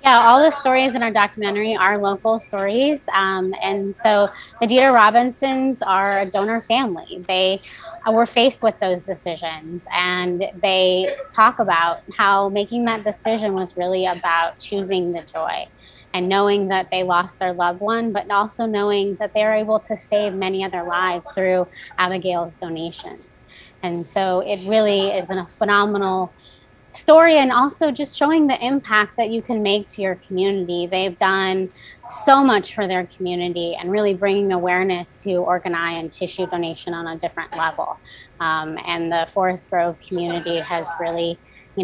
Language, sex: English, female